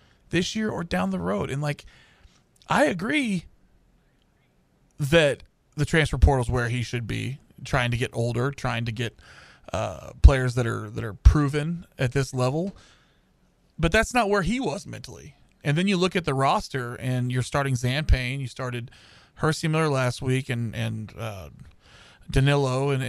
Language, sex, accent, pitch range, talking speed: English, male, American, 120-150 Hz, 170 wpm